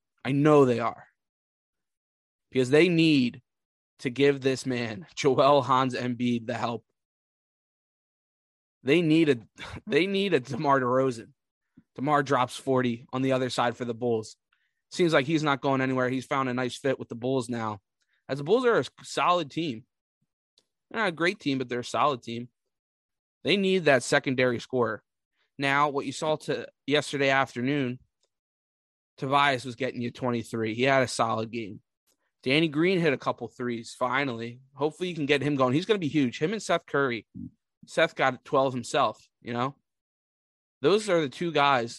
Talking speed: 175 wpm